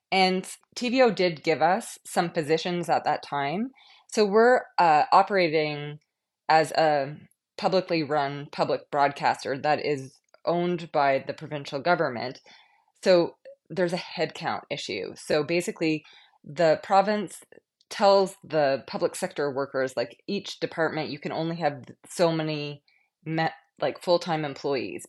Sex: female